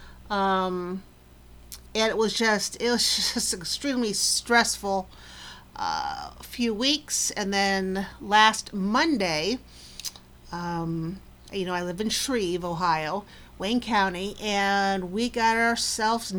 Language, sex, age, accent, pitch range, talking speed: English, female, 50-69, American, 170-230 Hz, 115 wpm